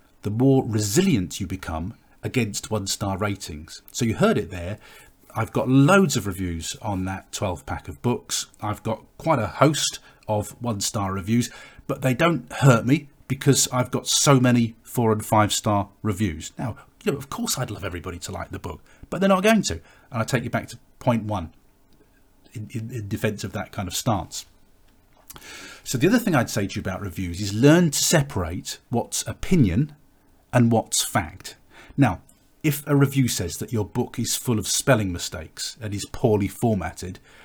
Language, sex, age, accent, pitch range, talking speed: English, male, 40-59, British, 95-130 Hz, 185 wpm